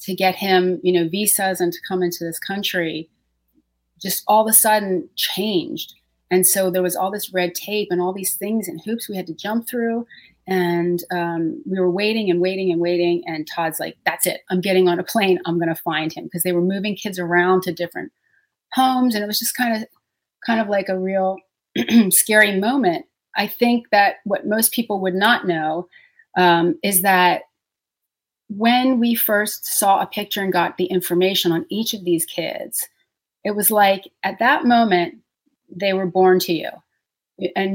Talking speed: 190 wpm